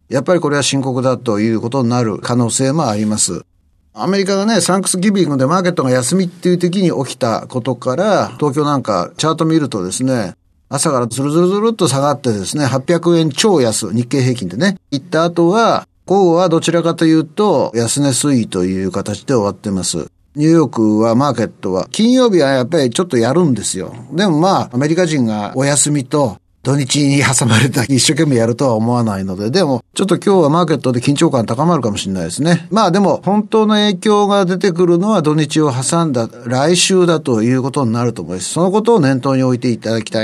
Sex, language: male, Japanese